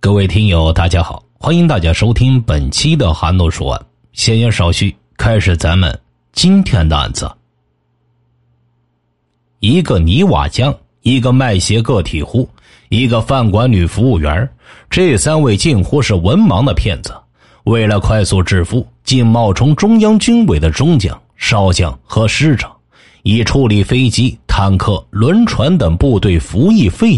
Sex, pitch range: male, 85-125 Hz